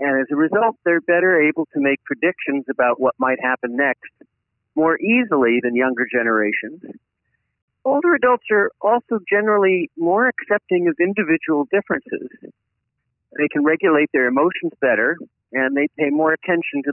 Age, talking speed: 50-69, 150 wpm